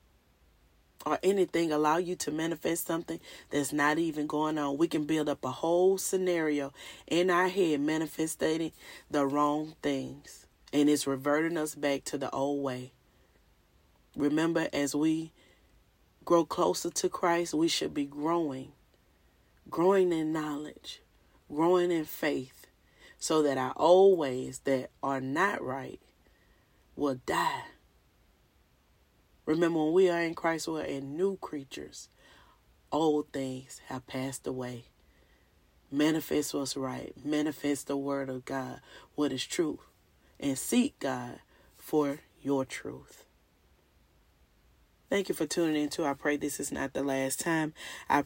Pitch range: 135-165 Hz